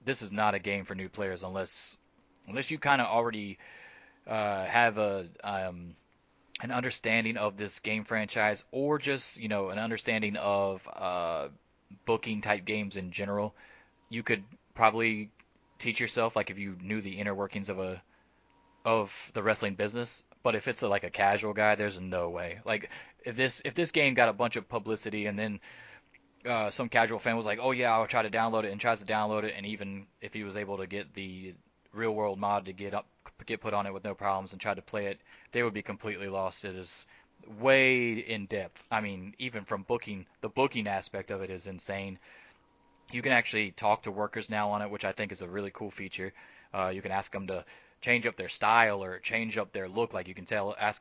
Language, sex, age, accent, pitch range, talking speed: English, male, 20-39, American, 100-115 Hz, 215 wpm